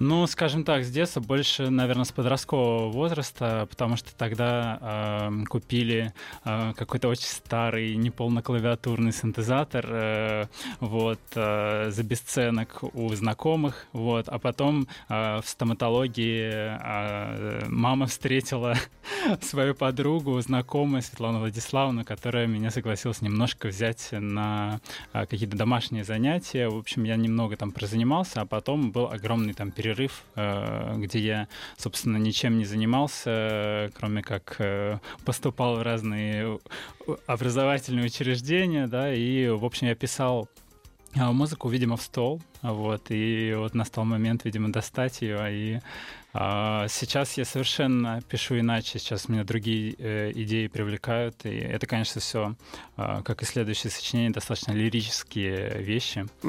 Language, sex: Russian, male